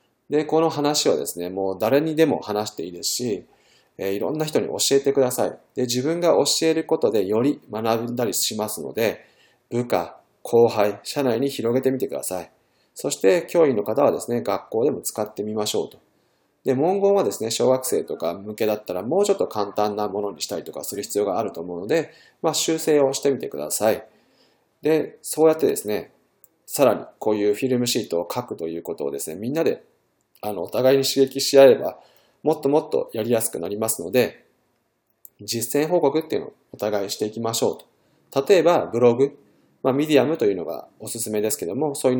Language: Japanese